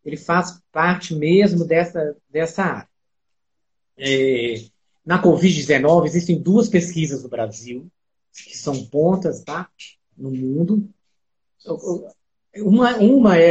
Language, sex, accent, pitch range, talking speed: Portuguese, male, Brazilian, 145-195 Hz, 100 wpm